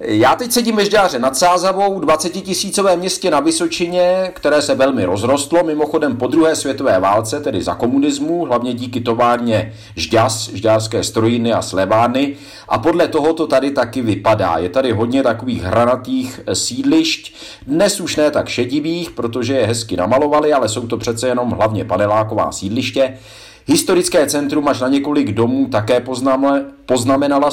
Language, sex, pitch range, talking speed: Czech, male, 115-145 Hz, 155 wpm